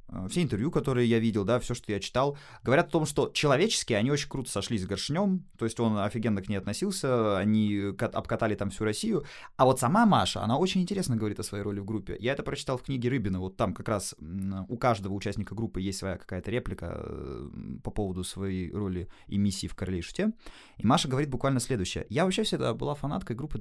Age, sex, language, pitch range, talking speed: 20-39, male, Russian, 105-135 Hz, 220 wpm